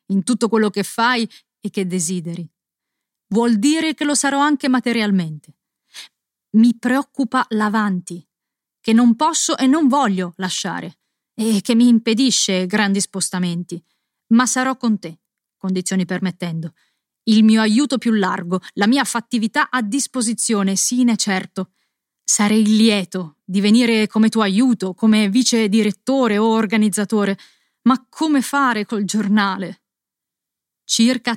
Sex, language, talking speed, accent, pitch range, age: female, Italian, 130 wpm, native, 185-230 Hz, 30-49